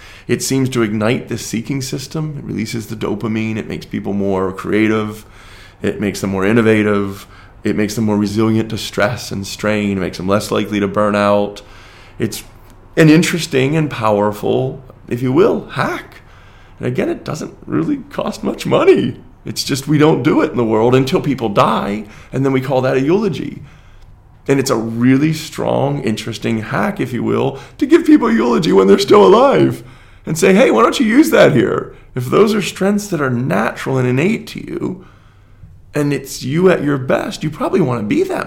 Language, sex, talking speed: English, male, 195 wpm